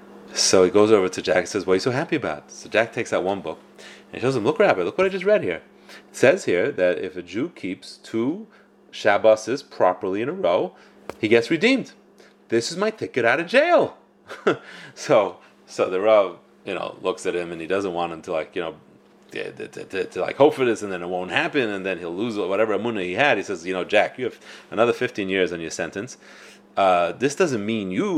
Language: English